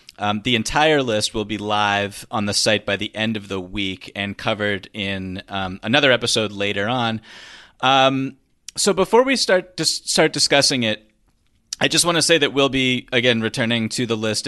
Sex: male